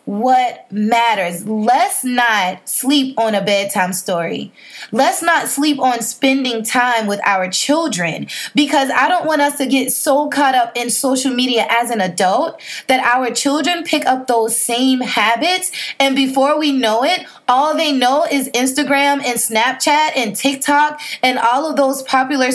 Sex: female